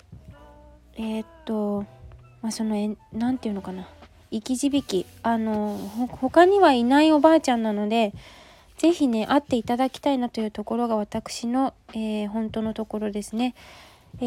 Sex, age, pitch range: female, 20-39, 220-285 Hz